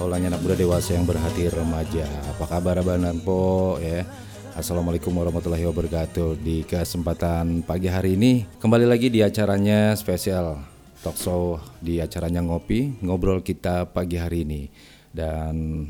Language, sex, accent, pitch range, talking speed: Indonesian, male, native, 85-95 Hz, 135 wpm